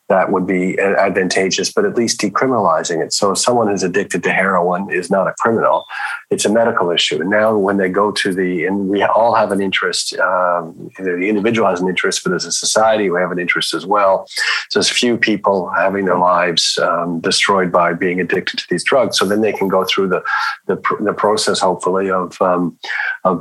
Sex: male